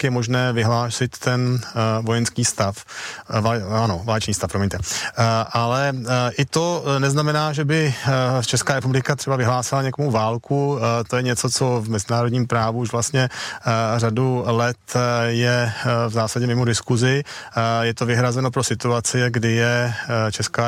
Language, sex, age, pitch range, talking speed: Czech, male, 30-49, 115-135 Hz, 165 wpm